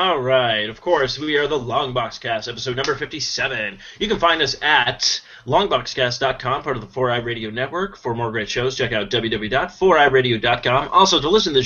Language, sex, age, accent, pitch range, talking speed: English, male, 30-49, American, 130-185 Hz, 185 wpm